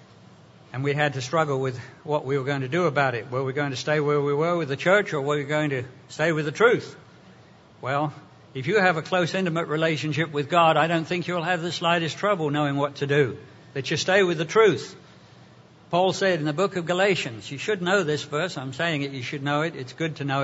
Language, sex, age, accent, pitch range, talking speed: English, male, 60-79, British, 145-180 Hz, 250 wpm